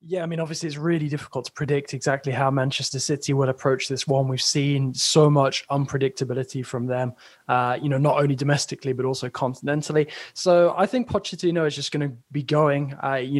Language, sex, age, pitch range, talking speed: English, male, 20-39, 135-165 Hz, 200 wpm